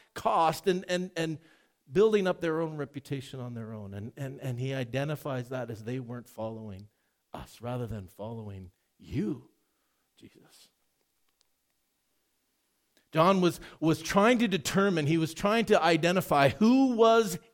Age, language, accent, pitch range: 50-69, English, American, 125-195 Hz